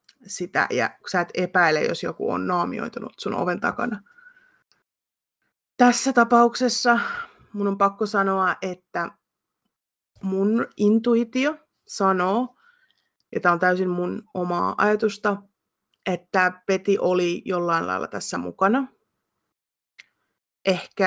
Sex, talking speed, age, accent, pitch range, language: female, 105 wpm, 30-49, native, 180-220 Hz, Finnish